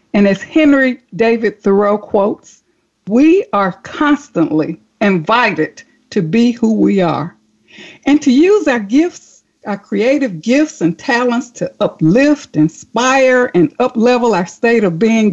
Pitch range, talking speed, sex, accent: 185-260 Hz, 135 wpm, female, American